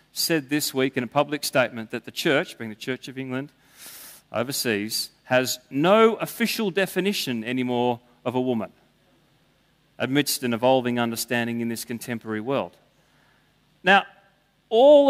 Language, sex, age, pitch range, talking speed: English, male, 40-59, 135-200 Hz, 135 wpm